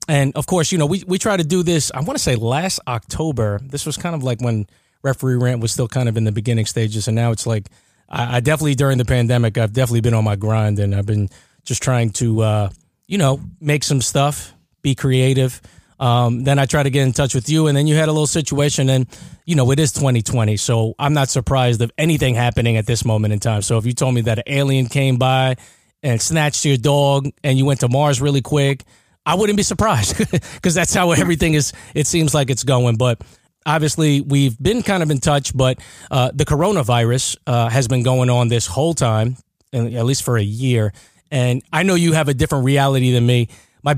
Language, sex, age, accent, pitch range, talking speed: English, male, 20-39, American, 120-150 Hz, 230 wpm